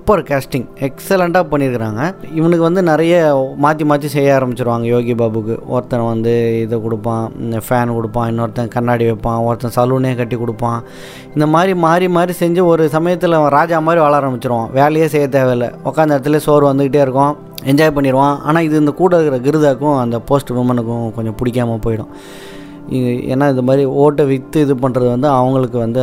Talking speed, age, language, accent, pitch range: 155 wpm, 20-39, Tamil, native, 125-160 Hz